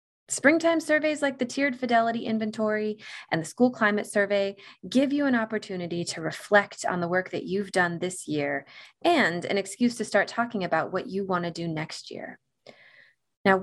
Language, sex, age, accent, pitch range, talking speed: English, female, 20-39, American, 165-225 Hz, 180 wpm